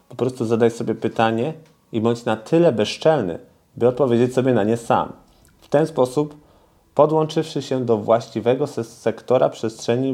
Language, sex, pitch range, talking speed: Polish, male, 100-120 Hz, 150 wpm